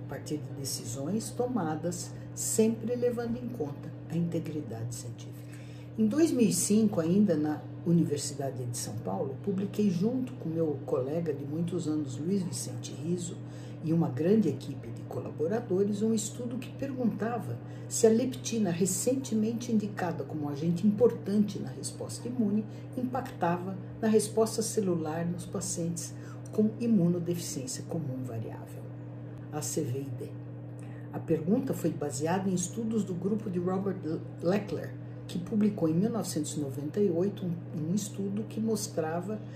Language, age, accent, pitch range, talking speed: Portuguese, 60-79, Brazilian, 130-210 Hz, 130 wpm